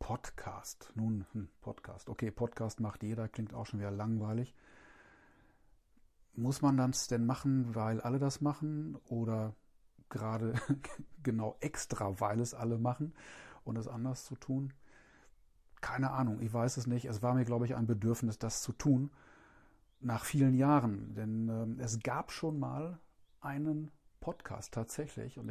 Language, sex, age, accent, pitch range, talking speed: German, male, 40-59, German, 110-130 Hz, 150 wpm